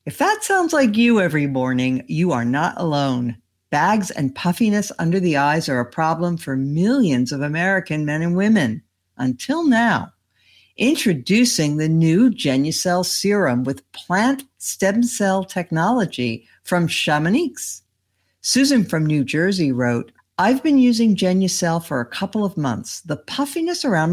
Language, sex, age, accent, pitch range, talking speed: English, female, 60-79, American, 150-225 Hz, 145 wpm